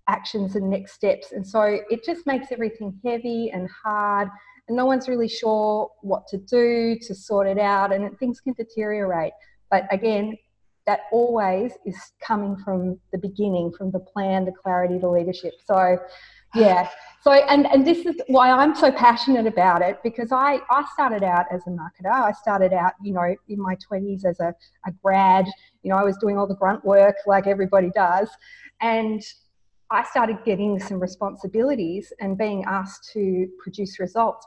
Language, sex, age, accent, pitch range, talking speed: English, female, 30-49, Australian, 190-240 Hz, 180 wpm